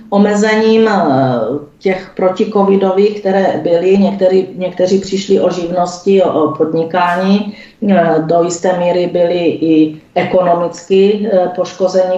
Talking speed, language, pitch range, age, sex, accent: 95 wpm, Czech, 175-200 Hz, 40-59, female, native